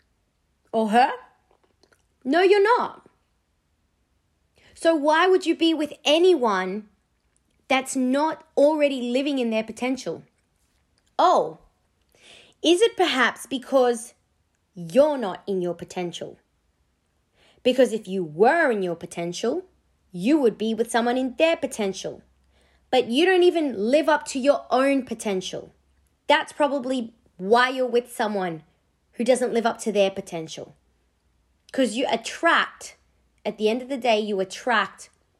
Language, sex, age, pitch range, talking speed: English, female, 20-39, 175-270 Hz, 130 wpm